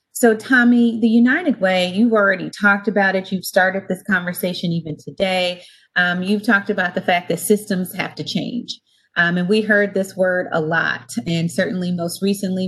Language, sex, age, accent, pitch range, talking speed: English, female, 30-49, American, 165-200 Hz, 185 wpm